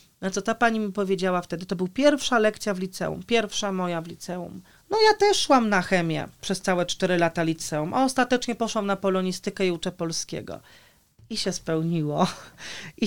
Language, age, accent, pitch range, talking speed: Polish, 30-49, native, 165-220 Hz, 185 wpm